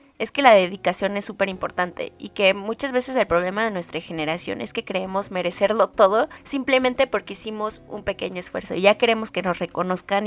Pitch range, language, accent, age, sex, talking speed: 185-230 Hz, Spanish, Mexican, 20-39, female, 195 wpm